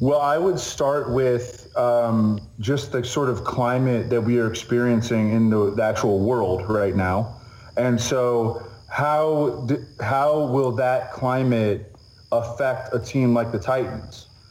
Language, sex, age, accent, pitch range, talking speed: English, male, 30-49, American, 110-130 Hz, 145 wpm